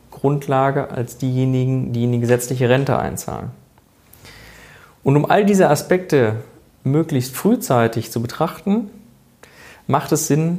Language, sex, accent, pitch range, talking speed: German, male, German, 120-150 Hz, 120 wpm